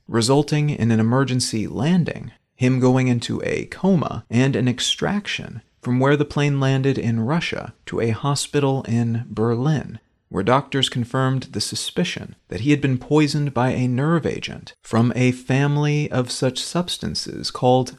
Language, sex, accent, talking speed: English, male, American, 155 wpm